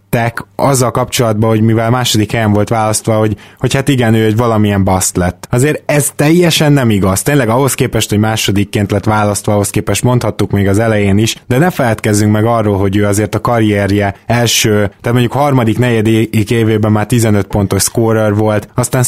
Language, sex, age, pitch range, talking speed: Hungarian, male, 20-39, 105-125 Hz, 180 wpm